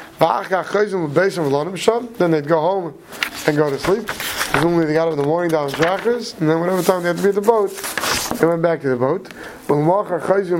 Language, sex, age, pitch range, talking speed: English, male, 30-49, 155-195 Hz, 165 wpm